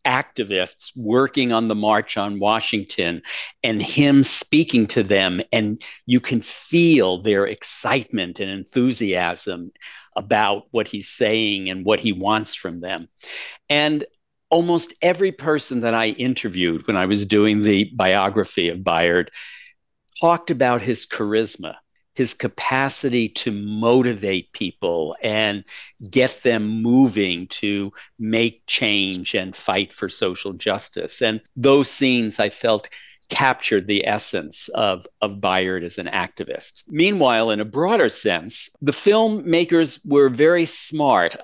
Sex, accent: male, American